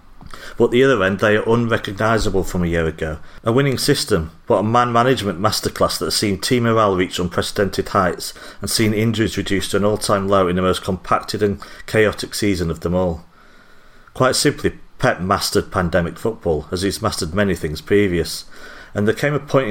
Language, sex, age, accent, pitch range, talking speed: English, male, 40-59, British, 85-110 Hz, 185 wpm